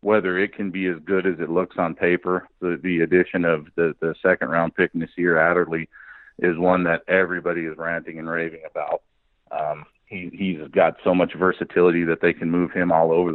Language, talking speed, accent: English, 205 wpm, American